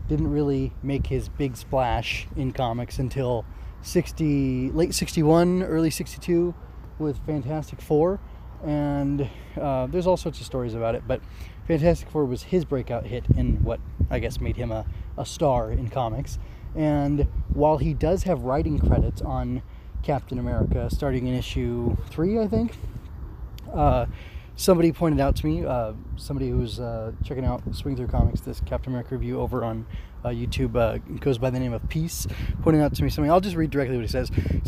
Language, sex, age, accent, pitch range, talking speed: English, male, 20-39, American, 115-145 Hz, 180 wpm